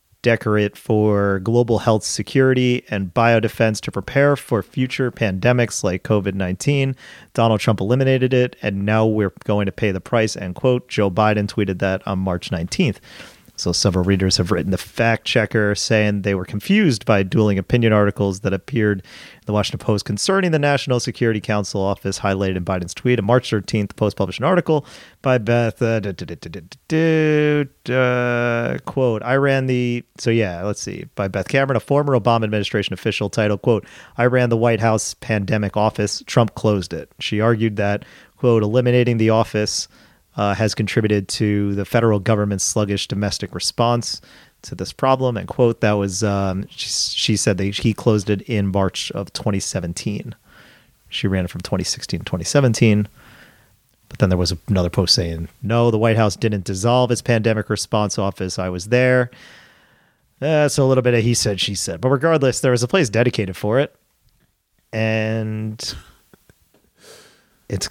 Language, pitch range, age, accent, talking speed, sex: English, 100-125 Hz, 40-59, American, 165 wpm, male